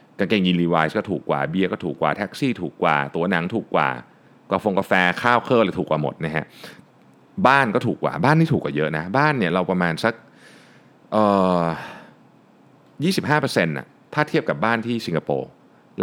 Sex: male